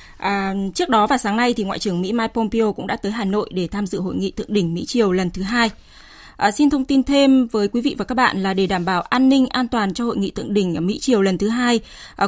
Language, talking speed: Vietnamese, 290 wpm